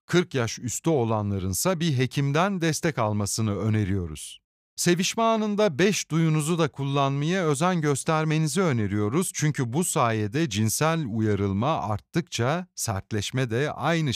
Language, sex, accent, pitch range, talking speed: Turkish, male, native, 110-165 Hz, 115 wpm